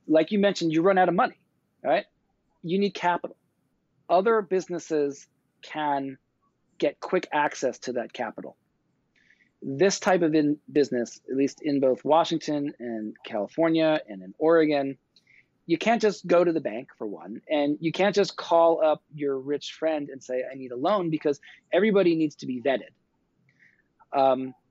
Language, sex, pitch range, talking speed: English, male, 135-165 Hz, 160 wpm